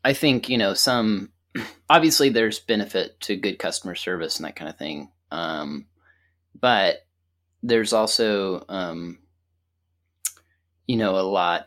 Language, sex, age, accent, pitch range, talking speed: English, male, 30-49, American, 90-120 Hz, 135 wpm